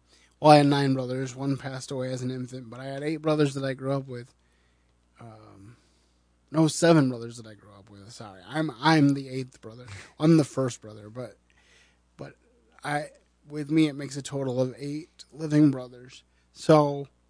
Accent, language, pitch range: American, English, 125-150 Hz